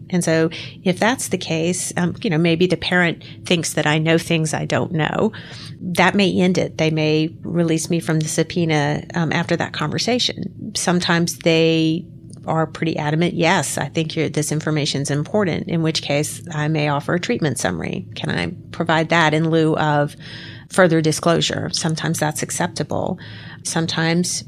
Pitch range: 155-175 Hz